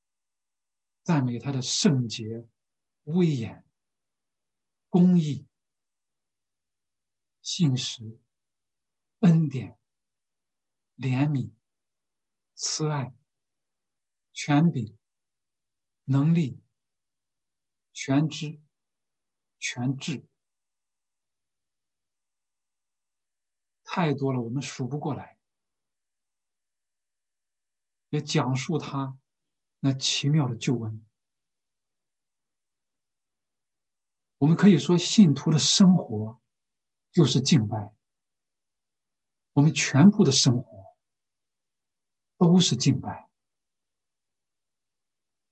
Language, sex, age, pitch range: Chinese, male, 60-79, 110-150 Hz